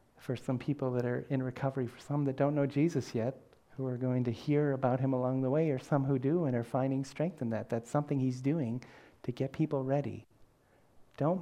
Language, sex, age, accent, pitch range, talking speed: English, male, 40-59, American, 125-155 Hz, 225 wpm